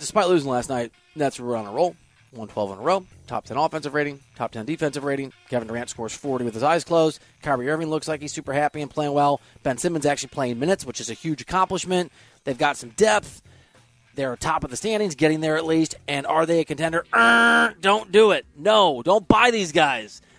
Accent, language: American, English